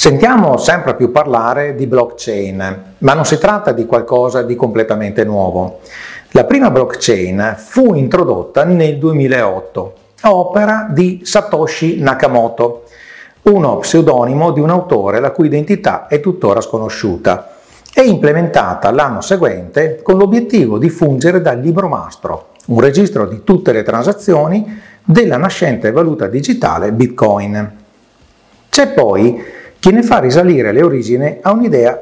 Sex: male